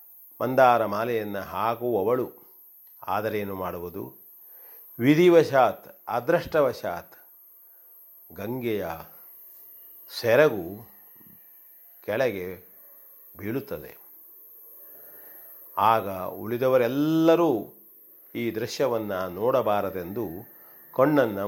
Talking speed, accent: 45 wpm, native